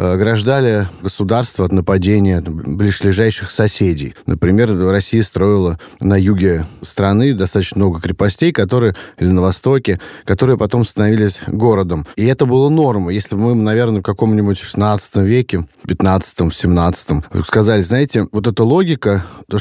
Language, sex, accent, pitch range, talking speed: Russian, male, native, 95-120 Hz, 135 wpm